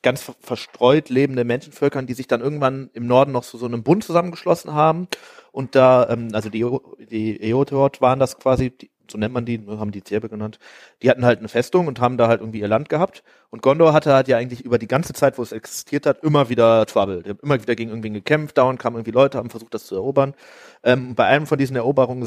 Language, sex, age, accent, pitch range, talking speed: German, male, 30-49, German, 115-140 Hz, 245 wpm